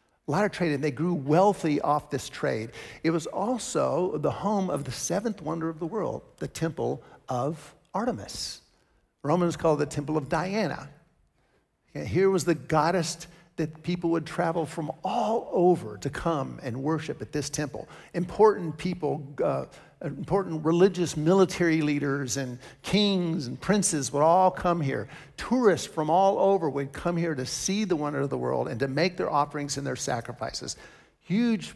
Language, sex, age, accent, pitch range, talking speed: English, male, 50-69, American, 145-180 Hz, 170 wpm